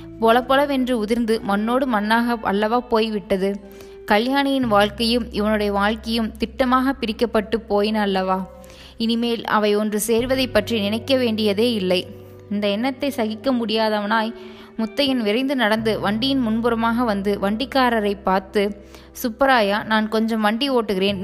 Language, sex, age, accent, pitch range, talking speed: Tamil, female, 20-39, native, 205-245 Hz, 105 wpm